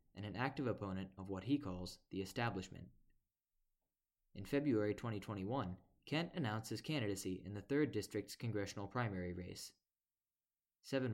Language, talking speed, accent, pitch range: English, 135 wpm, American, 95-120 Hz